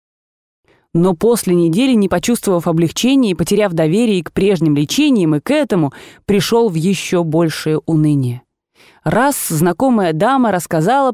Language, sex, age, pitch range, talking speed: Russian, female, 20-39, 170-230 Hz, 130 wpm